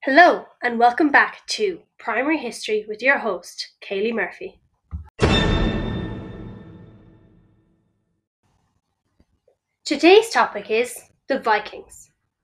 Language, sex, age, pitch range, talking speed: English, female, 10-29, 215-315 Hz, 80 wpm